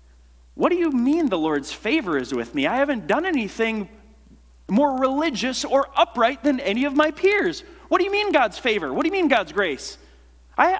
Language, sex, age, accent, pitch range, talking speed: English, male, 30-49, American, 135-225 Hz, 200 wpm